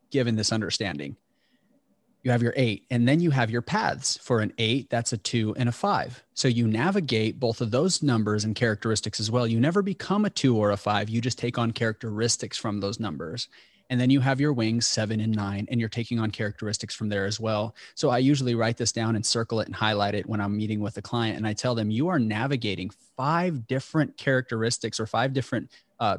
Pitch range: 110-125 Hz